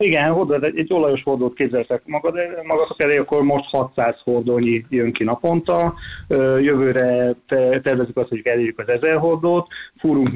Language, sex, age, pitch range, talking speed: Hungarian, male, 30-49, 120-140 Hz, 145 wpm